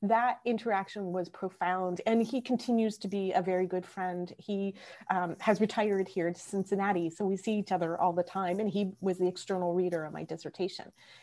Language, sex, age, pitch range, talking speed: English, female, 30-49, 180-225 Hz, 200 wpm